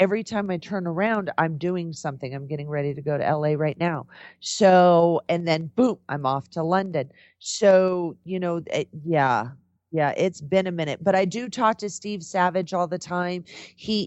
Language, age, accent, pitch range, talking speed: English, 40-59, American, 150-180 Hz, 190 wpm